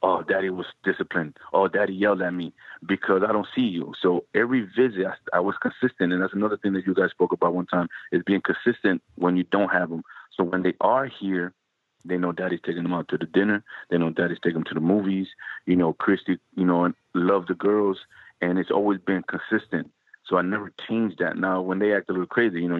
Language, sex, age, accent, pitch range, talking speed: English, male, 30-49, American, 90-100 Hz, 235 wpm